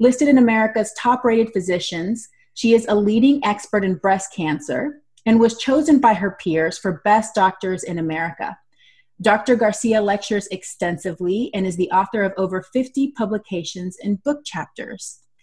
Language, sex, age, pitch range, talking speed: English, female, 30-49, 185-230 Hz, 155 wpm